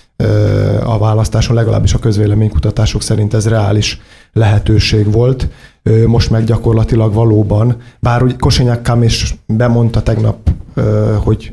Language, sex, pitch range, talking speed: Hungarian, male, 110-120 Hz, 115 wpm